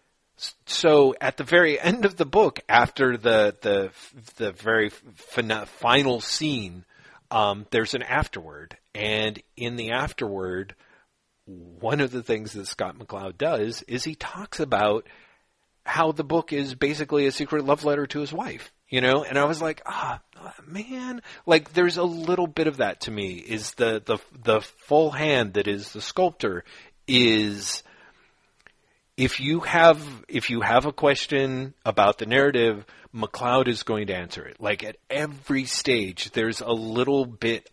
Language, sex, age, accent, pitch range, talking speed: English, male, 40-59, American, 105-145 Hz, 160 wpm